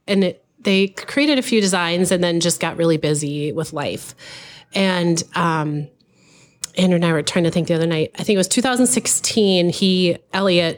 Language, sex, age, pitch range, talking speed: English, female, 30-49, 160-190 Hz, 190 wpm